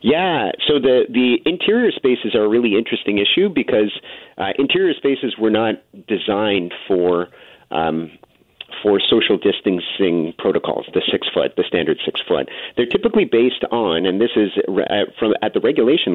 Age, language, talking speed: 40-59, English, 150 wpm